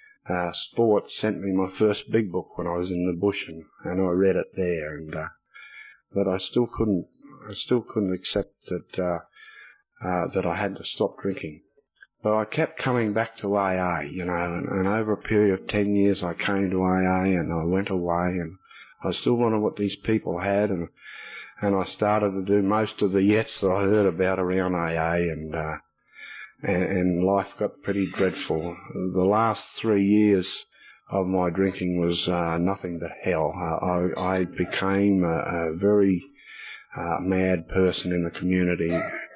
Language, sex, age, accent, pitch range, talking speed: English, male, 50-69, Australian, 85-100 Hz, 185 wpm